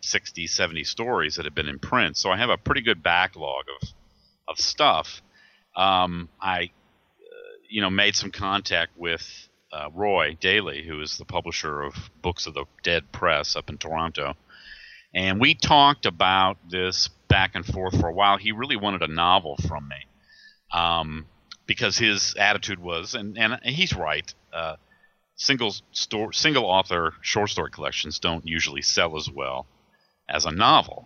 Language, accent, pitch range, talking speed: English, American, 80-110 Hz, 170 wpm